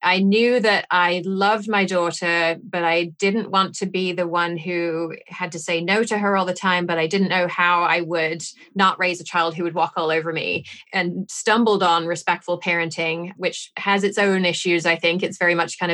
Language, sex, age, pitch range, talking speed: English, female, 30-49, 165-195 Hz, 220 wpm